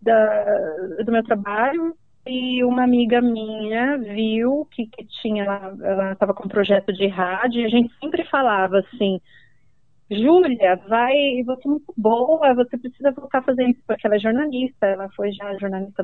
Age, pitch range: 30-49, 210-280 Hz